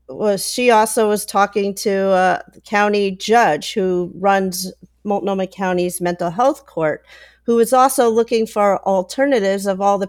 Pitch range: 185-215 Hz